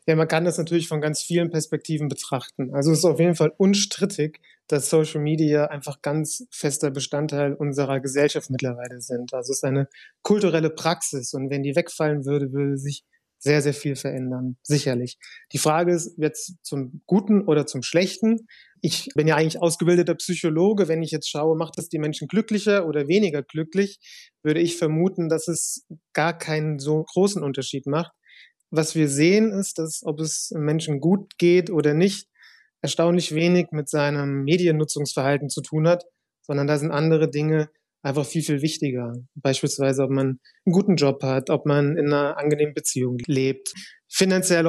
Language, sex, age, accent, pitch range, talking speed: German, male, 30-49, German, 145-170 Hz, 170 wpm